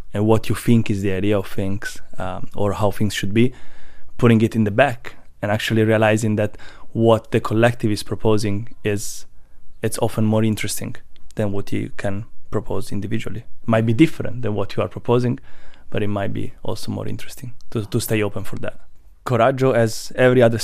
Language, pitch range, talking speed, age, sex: Czech, 105-120 Hz, 185 wpm, 20-39, male